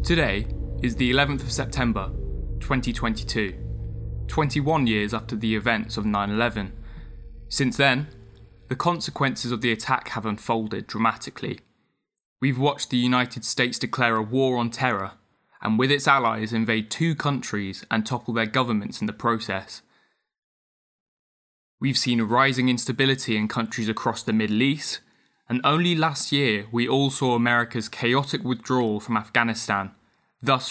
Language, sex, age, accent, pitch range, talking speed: English, male, 20-39, British, 110-135 Hz, 140 wpm